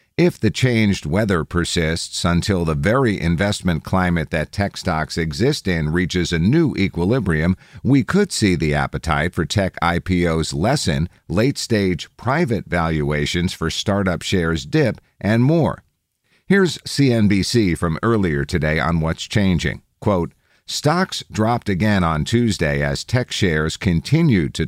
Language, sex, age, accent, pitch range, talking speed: English, male, 50-69, American, 85-110 Hz, 135 wpm